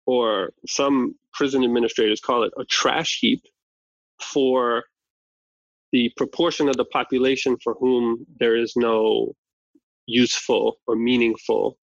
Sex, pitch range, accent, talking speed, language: male, 115-140 Hz, American, 115 wpm, English